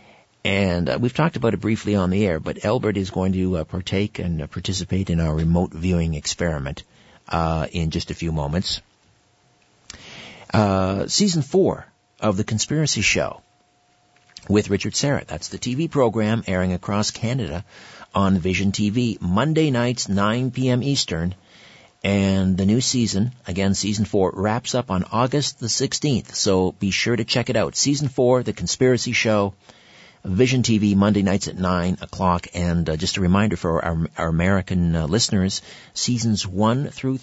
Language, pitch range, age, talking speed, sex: English, 90-120 Hz, 50-69, 165 wpm, male